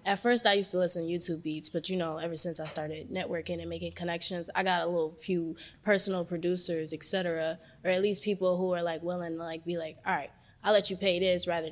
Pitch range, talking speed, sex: 165-190 Hz, 250 wpm, female